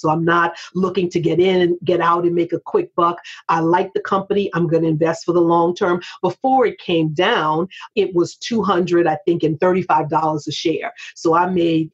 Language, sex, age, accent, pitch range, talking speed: English, female, 40-59, American, 165-190 Hz, 215 wpm